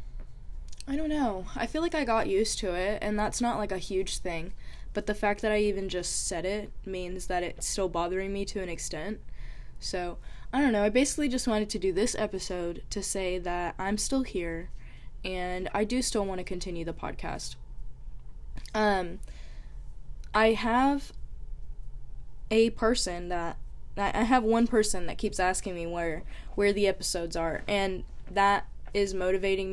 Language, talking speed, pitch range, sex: English, 175 wpm, 175-210 Hz, female